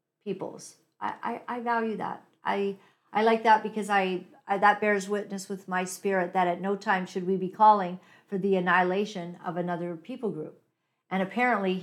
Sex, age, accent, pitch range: female, 50-69, American, 170-210 Hz